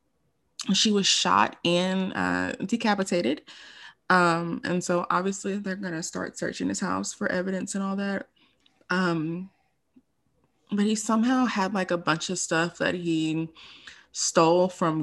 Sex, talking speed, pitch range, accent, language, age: female, 145 wpm, 170-215 Hz, American, English, 20-39